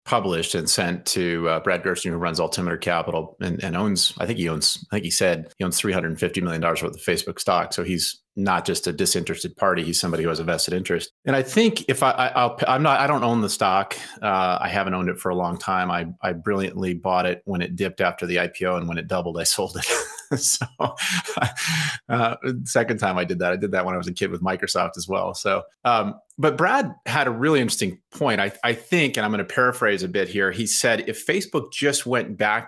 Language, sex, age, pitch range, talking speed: English, male, 30-49, 90-120 Hz, 235 wpm